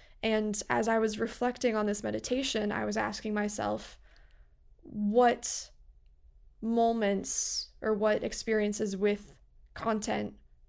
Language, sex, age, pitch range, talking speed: English, female, 20-39, 205-245 Hz, 105 wpm